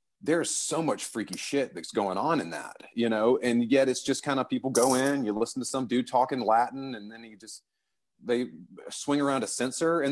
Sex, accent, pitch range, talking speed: male, American, 105-135 Hz, 225 wpm